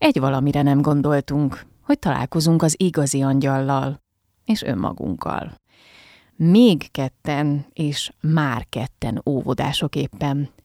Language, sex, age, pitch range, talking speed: Hungarian, female, 30-49, 135-170 Hz, 100 wpm